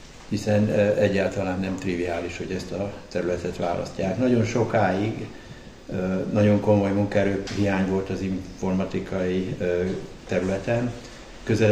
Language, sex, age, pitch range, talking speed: Hungarian, male, 60-79, 95-105 Hz, 100 wpm